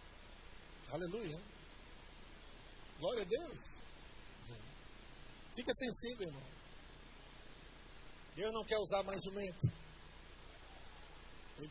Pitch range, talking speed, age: 155-225 Hz, 75 wpm, 60-79